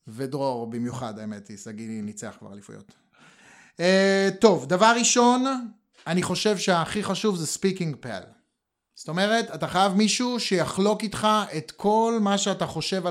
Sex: male